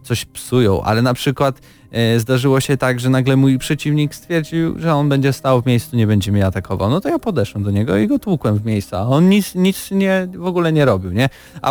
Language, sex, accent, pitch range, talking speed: Polish, male, native, 120-150 Hz, 225 wpm